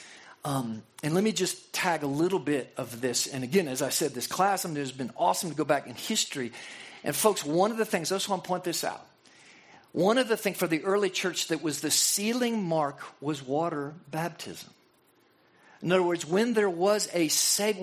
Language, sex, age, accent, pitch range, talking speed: English, male, 50-69, American, 170-230 Hz, 210 wpm